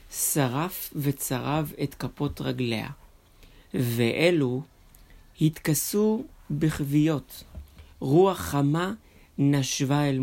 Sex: male